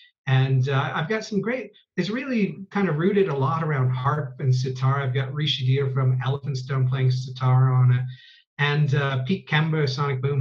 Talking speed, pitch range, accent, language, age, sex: 195 wpm, 130-165 Hz, American, English, 40-59, male